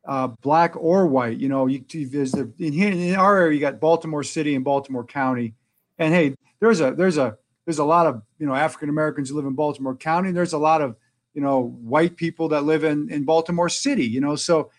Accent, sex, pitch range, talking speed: American, male, 135-175 Hz, 230 wpm